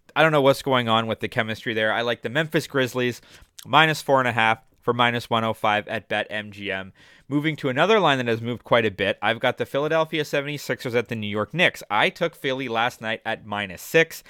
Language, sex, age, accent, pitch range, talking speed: English, male, 20-39, American, 110-145 Hz, 225 wpm